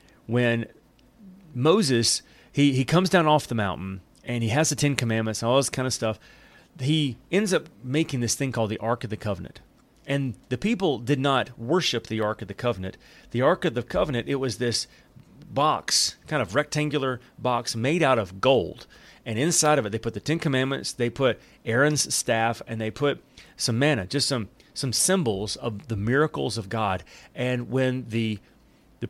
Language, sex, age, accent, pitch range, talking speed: English, male, 30-49, American, 115-145 Hz, 190 wpm